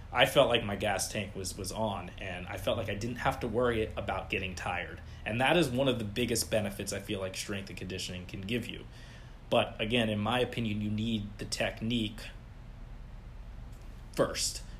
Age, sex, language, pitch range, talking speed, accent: 20-39, male, English, 100-115 Hz, 195 wpm, American